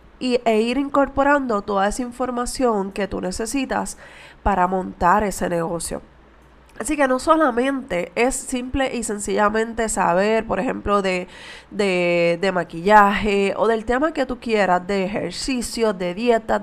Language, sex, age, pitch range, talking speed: Spanish, female, 20-39, 195-250 Hz, 135 wpm